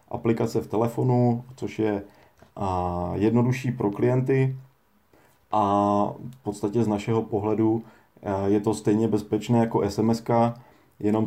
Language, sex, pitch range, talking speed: Czech, male, 100-115 Hz, 110 wpm